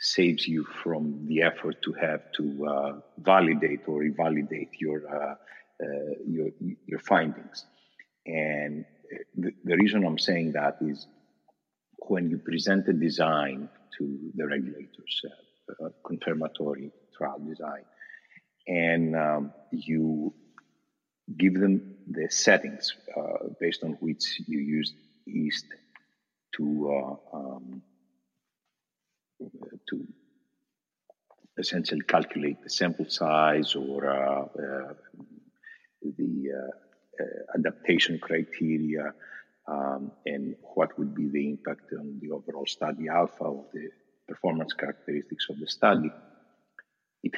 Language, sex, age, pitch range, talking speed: English, male, 50-69, 70-90 Hz, 115 wpm